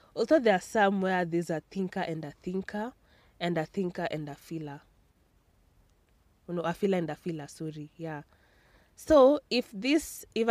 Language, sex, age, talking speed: English, female, 20-39, 170 wpm